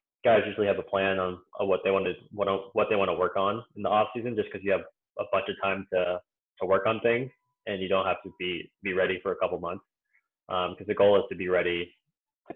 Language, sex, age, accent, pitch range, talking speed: English, male, 20-39, American, 90-100 Hz, 270 wpm